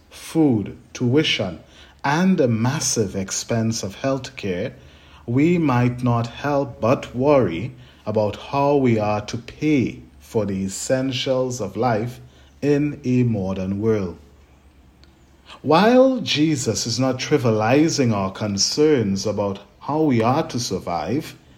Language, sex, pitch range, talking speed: English, male, 95-140 Hz, 120 wpm